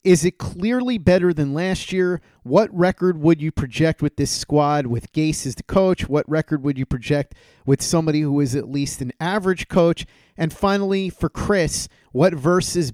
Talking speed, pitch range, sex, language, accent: 185 wpm, 130-160 Hz, male, English, American